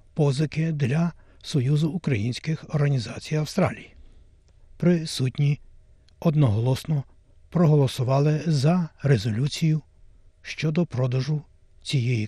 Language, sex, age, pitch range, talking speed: Ukrainian, male, 60-79, 115-155 Hz, 70 wpm